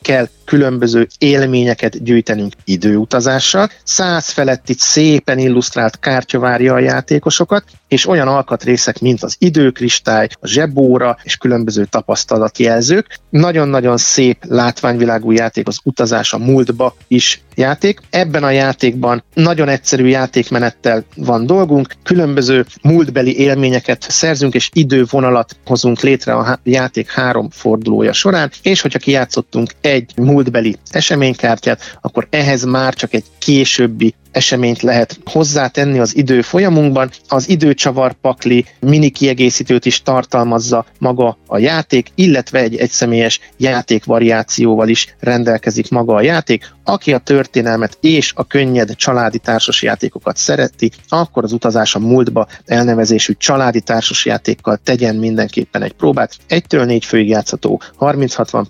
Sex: male